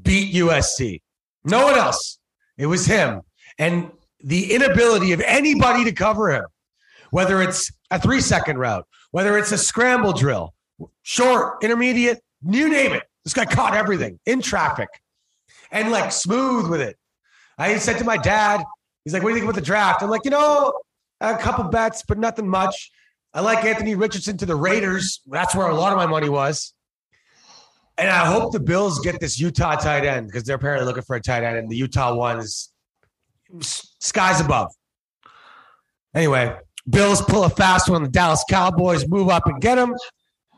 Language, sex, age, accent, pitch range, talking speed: English, male, 30-49, American, 140-210 Hz, 175 wpm